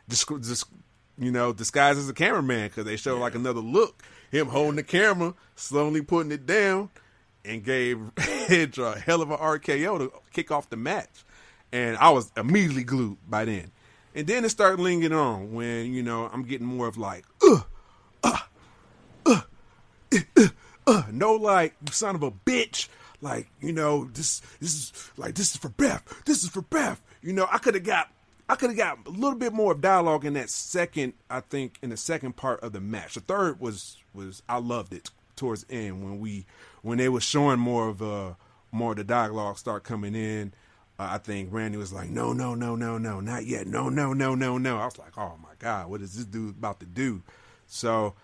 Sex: male